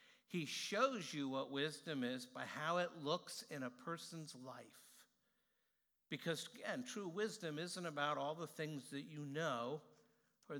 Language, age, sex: English, 60-79, male